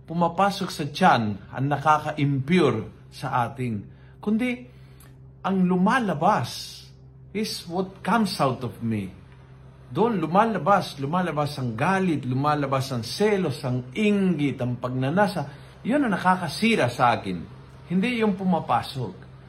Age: 50-69